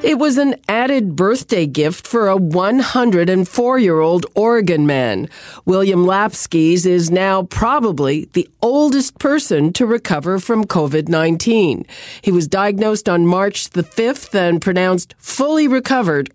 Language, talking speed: English, 125 wpm